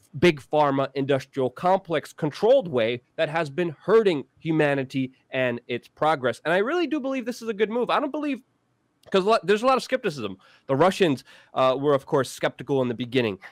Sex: male